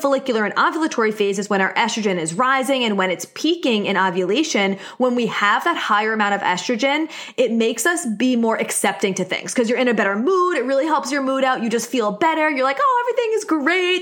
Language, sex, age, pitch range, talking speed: English, female, 20-39, 205-275 Hz, 230 wpm